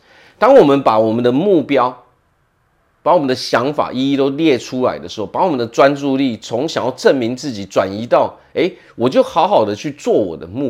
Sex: male